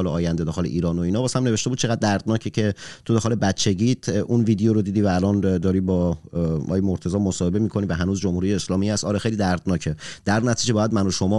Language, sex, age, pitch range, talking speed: Persian, male, 30-49, 90-115 Hz, 210 wpm